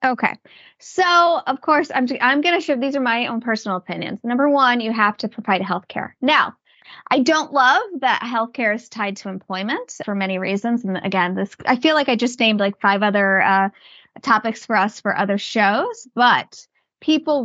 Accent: American